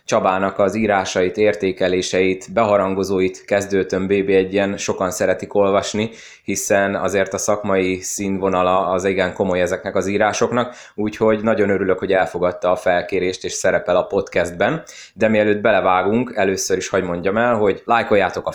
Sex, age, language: male, 20-39, Hungarian